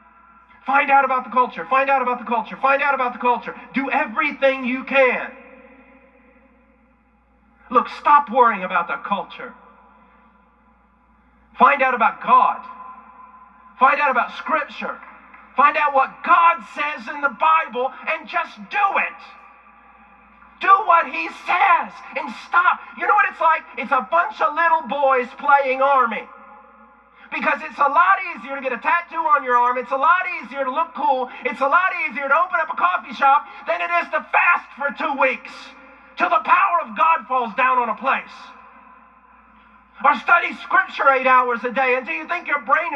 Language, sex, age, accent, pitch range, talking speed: English, male, 40-59, American, 245-320 Hz, 170 wpm